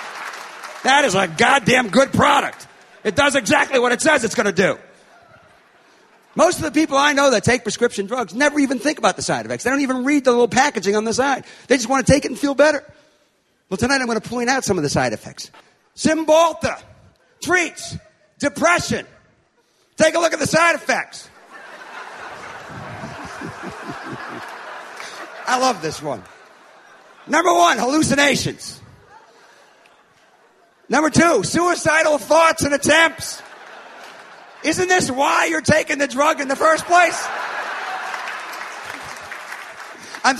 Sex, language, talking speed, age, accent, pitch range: male, English, 145 wpm, 50-69, American, 255-315 Hz